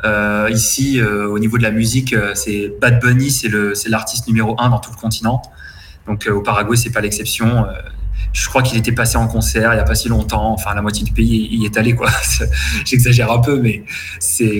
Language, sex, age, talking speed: French, male, 30-49, 235 wpm